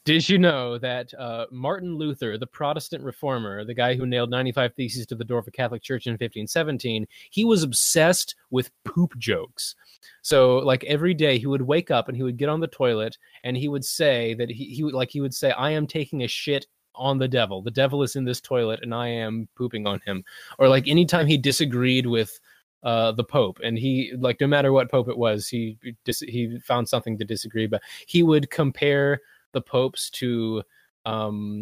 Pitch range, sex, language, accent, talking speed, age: 115-140 Hz, male, English, American, 205 wpm, 20-39